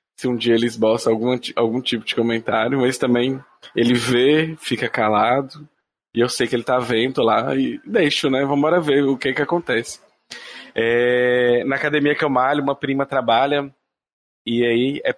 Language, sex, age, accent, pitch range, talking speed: Portuguese, male, 20-39, Brazilian, 120-150 Hz, 180 wpm